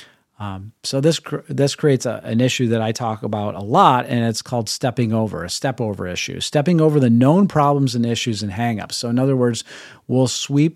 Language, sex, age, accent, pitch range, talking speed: English, male, 40-59, American, 115-140 Hz, 210 wpm